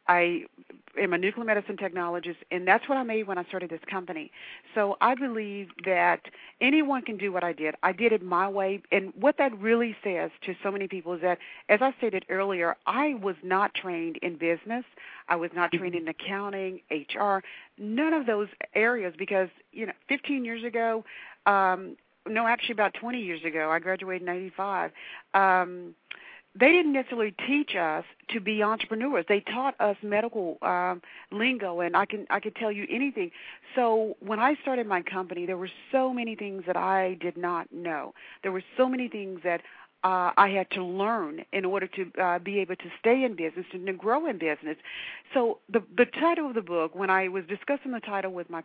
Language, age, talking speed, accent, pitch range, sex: English, 40-59, 200 wpm, American, 185-235 Hz, female